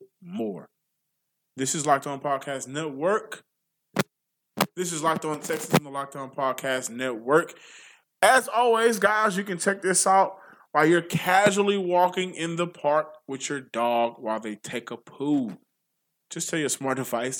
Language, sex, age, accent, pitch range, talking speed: English, male, 20-39, American, 125-180 Hz, 160 wpm